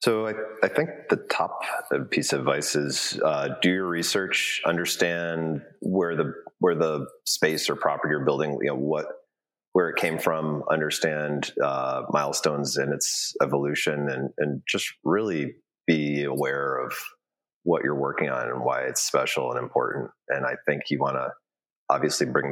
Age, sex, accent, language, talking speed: 30-49, male, American, English, 165 wpm